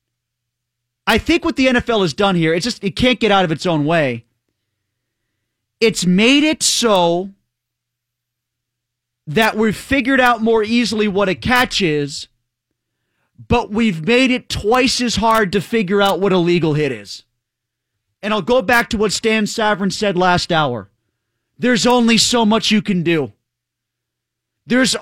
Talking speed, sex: 160 wpm, male